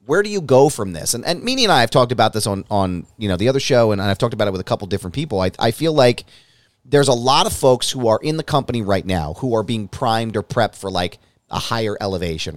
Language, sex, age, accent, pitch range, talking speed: English, male, 30-49, American, 105-135 Hz, 280 wpm